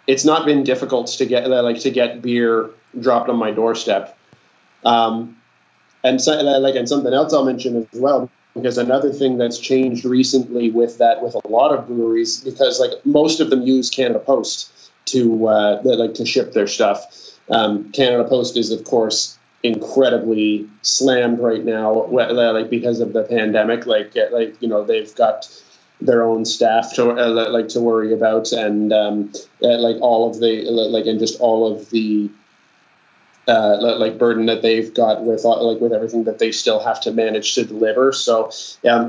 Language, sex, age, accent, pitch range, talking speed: English, male, 20-39, American, 110-125 Hz, 180 wpm